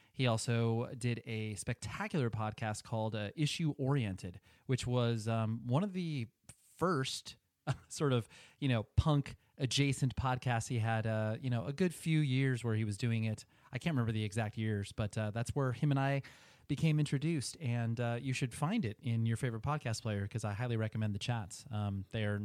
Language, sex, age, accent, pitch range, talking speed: English, male, 30-49, American, 110-135 Hz, 195 wpm